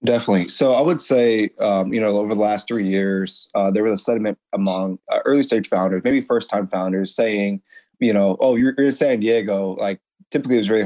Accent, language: American, English